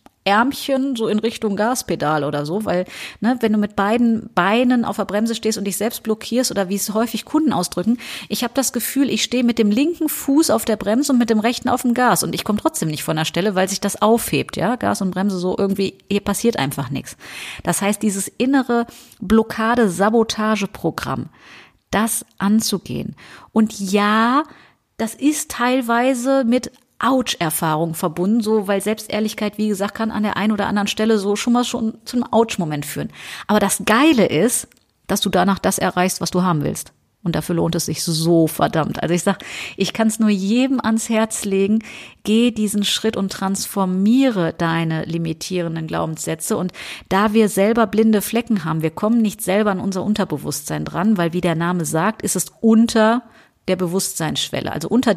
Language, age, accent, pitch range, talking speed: German, 30-49, German, 185-230 Hz, 185 wpm